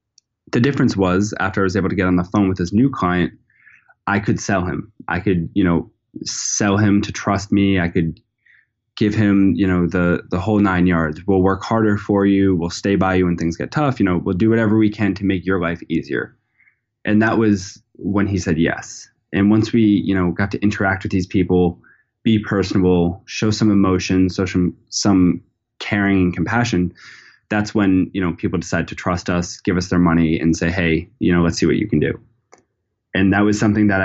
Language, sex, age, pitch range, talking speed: English, male, 20-39, 90-105 Hz, 215 wpm